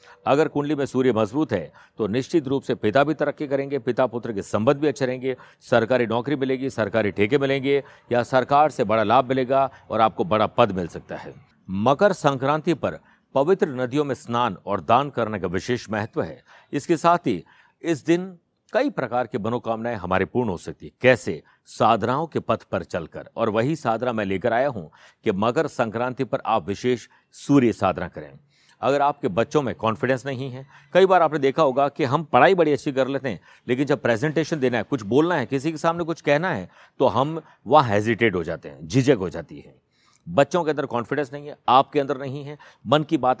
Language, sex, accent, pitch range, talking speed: Hindi, male, native, 115-145 Hz, 205 wpm